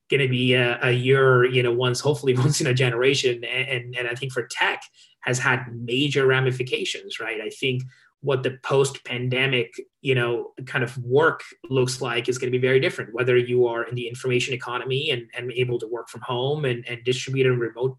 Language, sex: English, male